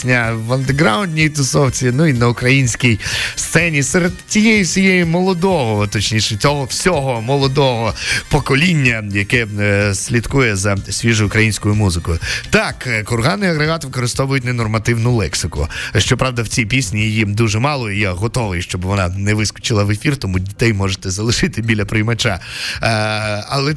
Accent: native